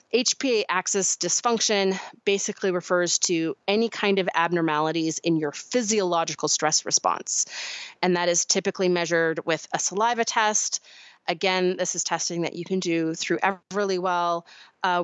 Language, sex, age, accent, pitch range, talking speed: English, female, 30-49, American, 170-210 Hz, 145 wpm